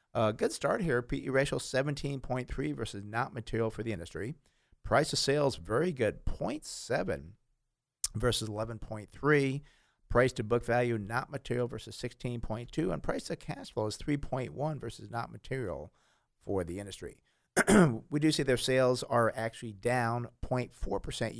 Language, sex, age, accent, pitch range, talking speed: English, male, 50-69, American, 110-130 Hz, 140 wpm